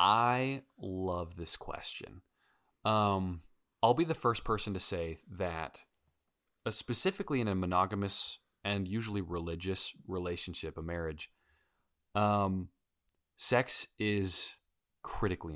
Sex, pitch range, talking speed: male, 90-115 Hz, 110 wpm